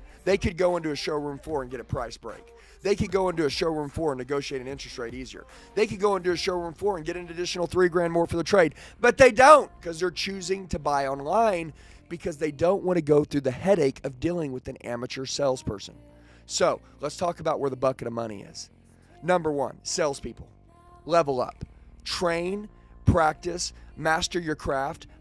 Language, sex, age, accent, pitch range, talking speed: English, male, 30-49, American, 130-180 Hz, 205 wpm